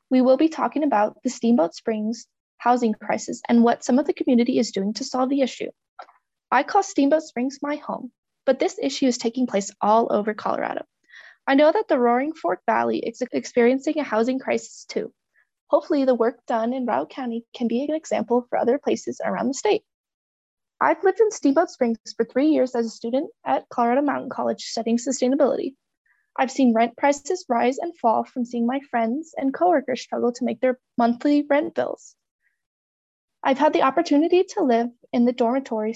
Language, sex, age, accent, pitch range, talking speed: English, female, 20-39, American, 235-295 Hz, 190 wpm